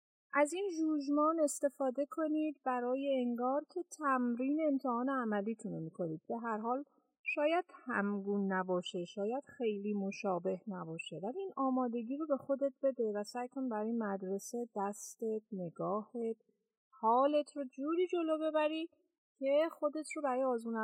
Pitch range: 205-285 Hz